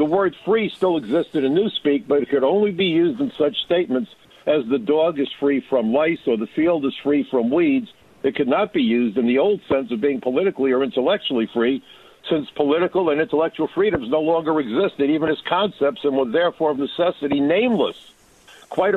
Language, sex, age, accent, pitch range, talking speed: English, male, 60-79, American, 130-175 Hz, 200 wpm